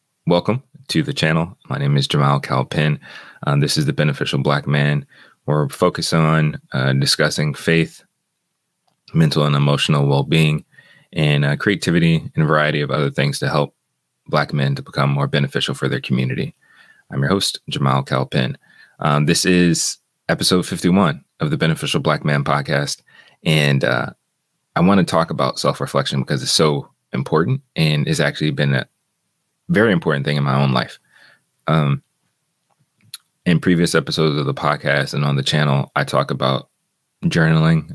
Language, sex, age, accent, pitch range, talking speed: English, male, 30-49, American, 70-80 Hz, 160 wpm